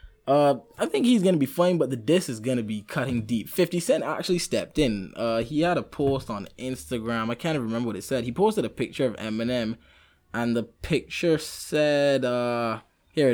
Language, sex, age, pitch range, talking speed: English, male, 10-29, 115-145 Hz, 215 wpm